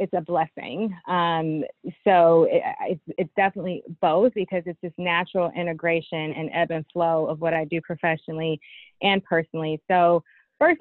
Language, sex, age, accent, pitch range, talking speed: English, female, 20-39, American, 160-190 Hz, 155 wpm